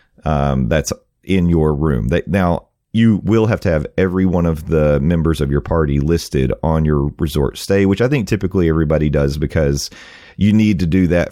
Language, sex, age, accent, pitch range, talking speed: English, male, 40-59, American, 75-95 Hz, 195 wpm